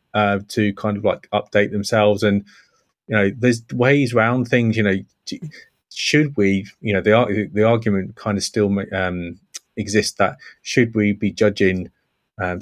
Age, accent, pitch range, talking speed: 30-49, British, 100-115 Hz, 160 wpm